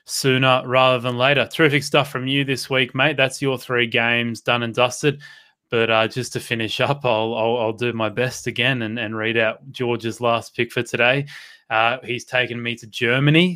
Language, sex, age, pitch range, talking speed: English, male, 20-39, 115-130 Hz, 205 wpm